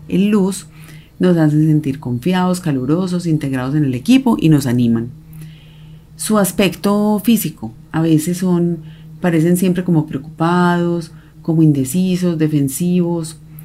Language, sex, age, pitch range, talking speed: Spanish, female, 30-49, 145-175 Hz, 120 wpm